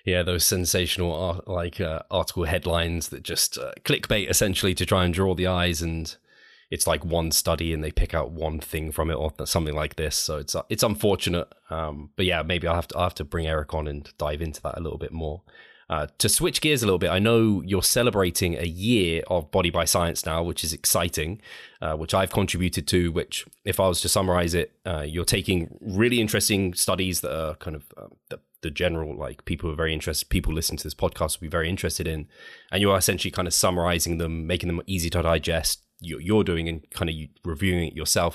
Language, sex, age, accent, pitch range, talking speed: English, male, 20-39, British, 80-90 Hz, 230 wpm